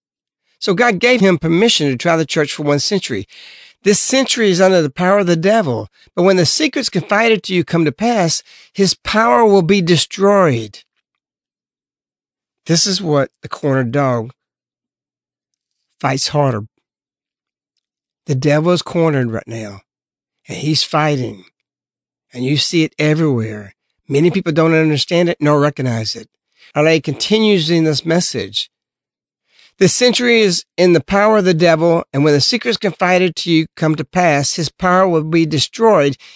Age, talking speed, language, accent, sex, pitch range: 60-79, 160 wpm, English, American, male, 145-195 Hz